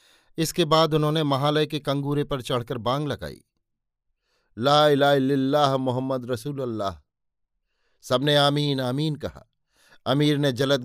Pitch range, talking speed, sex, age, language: 120-145 Hz, 125 wpm, male, 50-69, Hindi